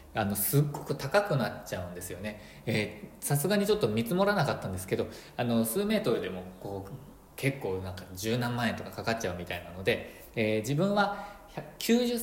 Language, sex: Japanese, male